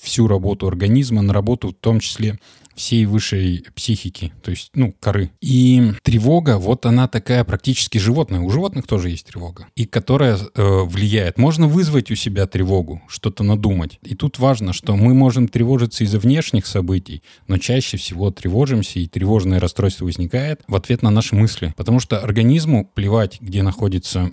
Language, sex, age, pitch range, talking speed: Russian, male, 20-39, 95-120 Hz, 165 wpm